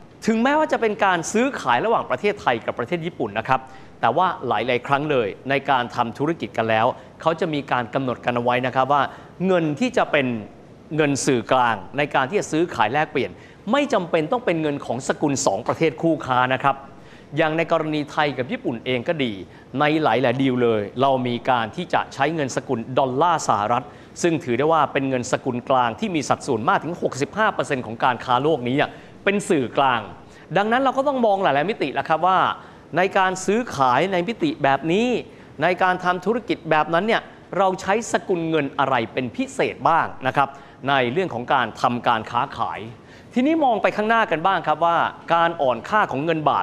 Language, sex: Thai, male